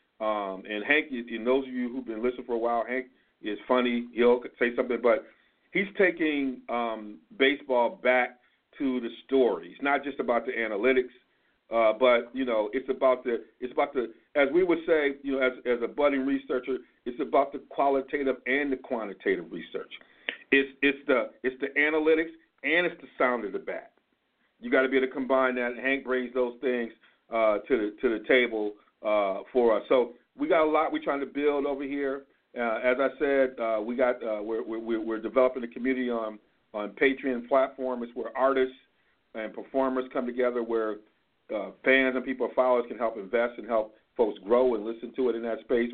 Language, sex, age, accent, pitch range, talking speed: English, male, 50-69, American, 115-135 Hz, 195 wpm